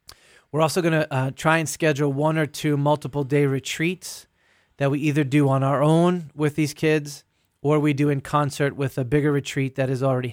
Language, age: English, 30-49